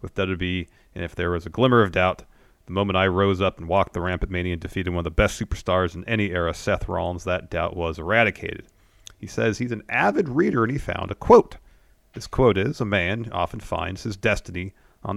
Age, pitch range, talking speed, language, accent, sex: 30-49, 90-110 Hz, 225 wpm, English, American, male